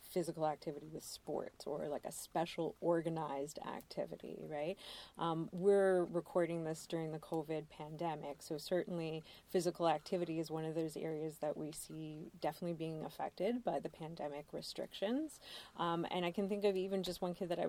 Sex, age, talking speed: female, 30-49, 170 wpm